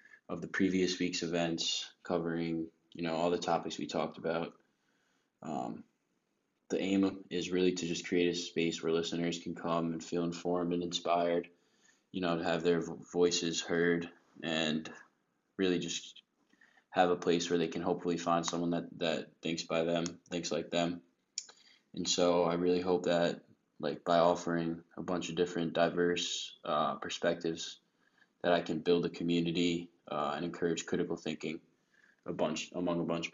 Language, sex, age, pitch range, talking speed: English, male, 20-39, 85-90 Hz, 165 wpm